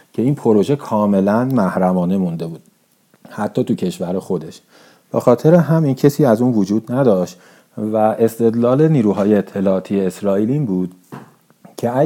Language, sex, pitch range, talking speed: Persian, male, 100-145 Hz, 130 wpm